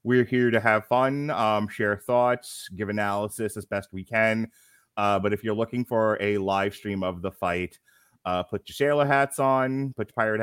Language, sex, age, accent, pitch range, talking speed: English, male, 30-49, American, 100-130 Hz, 200 wpm